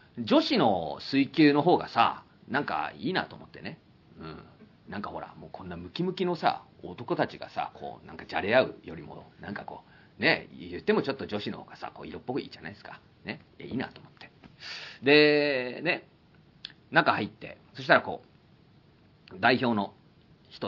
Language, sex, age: Japanese, male, 40-59